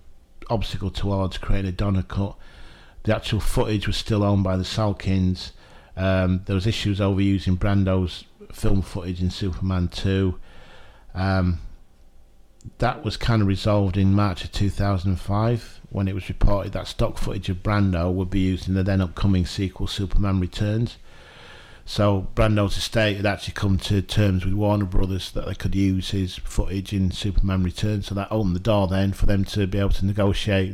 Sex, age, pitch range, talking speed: male, 40-59, 95-105 Hz, 175 wpm